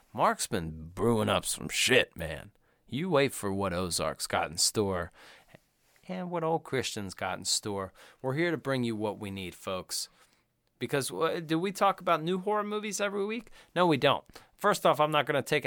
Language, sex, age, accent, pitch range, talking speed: English, male, 30-49, American, 110-170 Hz, 200 wpm